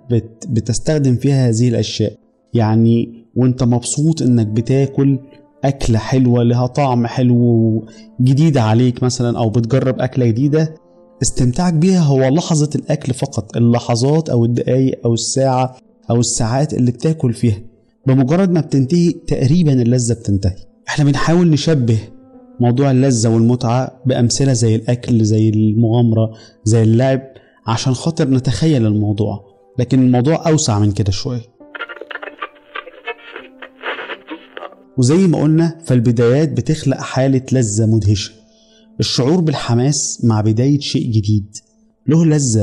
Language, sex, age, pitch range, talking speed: Arabic, male, 20-39, 115-145 Hz, 115 wpm